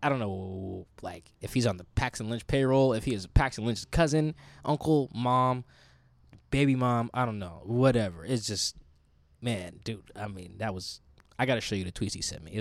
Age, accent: 10-29, American